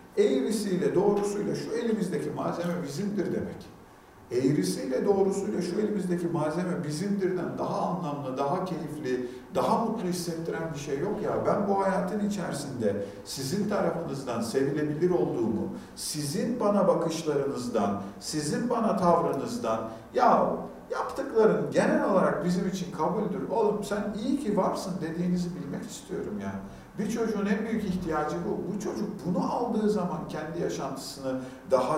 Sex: male